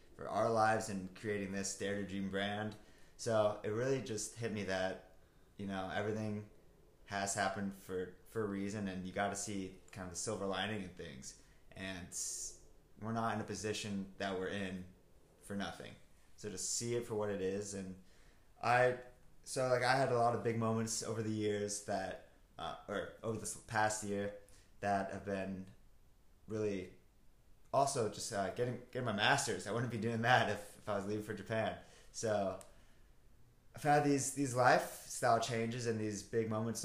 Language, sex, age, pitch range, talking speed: English, male, 20-39, 95-115 Hz, 180 wpm